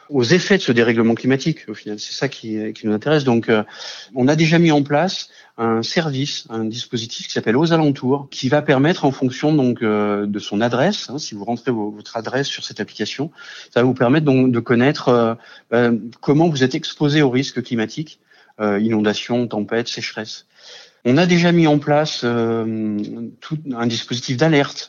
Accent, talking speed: French, 185 wpm